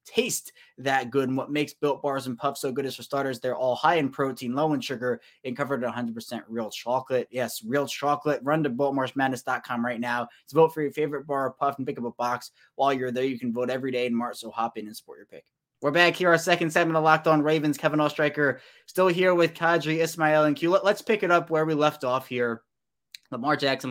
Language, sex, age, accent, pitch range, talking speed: English, male, 20-39, American, 120-155 Hz, 245 wpm